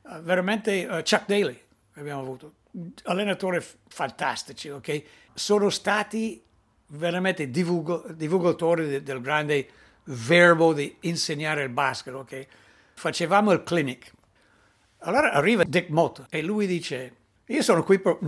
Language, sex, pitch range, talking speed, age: Italian, male, 135-190 Hz, 120 wpm, 60-79